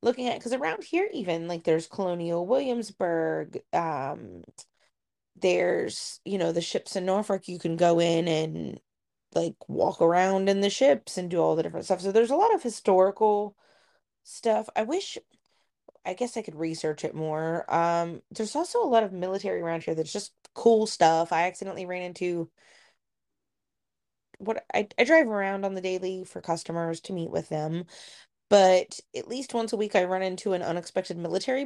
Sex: female